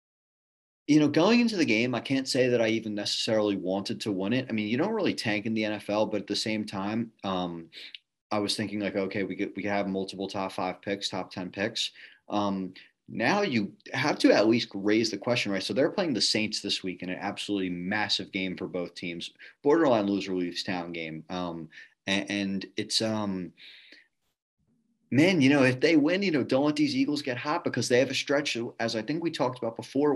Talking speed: 220 wpm